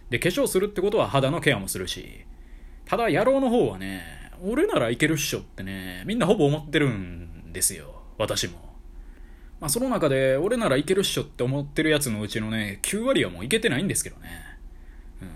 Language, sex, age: Japanese, male, 20-39